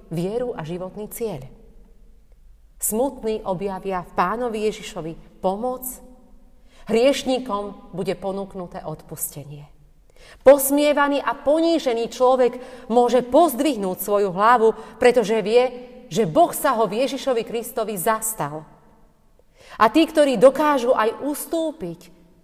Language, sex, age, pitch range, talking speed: Slovak, female, 40-59, 170-240 Hz, 100 wpm